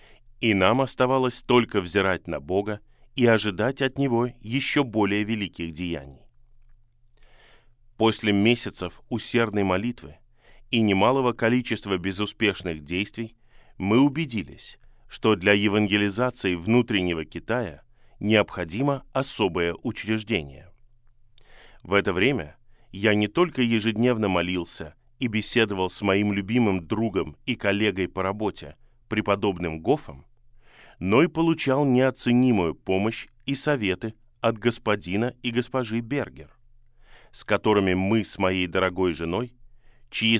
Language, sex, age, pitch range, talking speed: Russian, male, 20-39, 100-120 Hz, 110 wpm